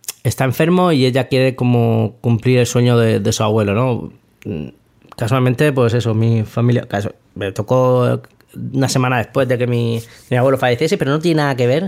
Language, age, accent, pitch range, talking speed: English, 20-39, Spanish, 115-140 Hz, 185 wpm